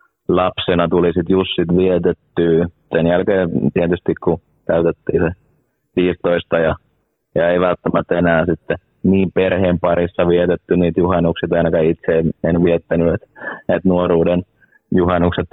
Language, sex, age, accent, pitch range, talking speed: Finnish, male, 30-49, native, 80-90 Hz, 130 wpm